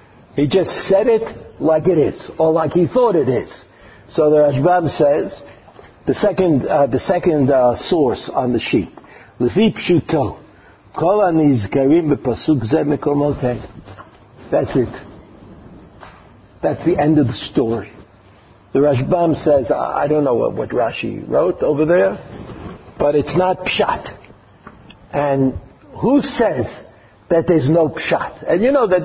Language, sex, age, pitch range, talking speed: English, male, 60-79, 120-175 Hz, 130 wpm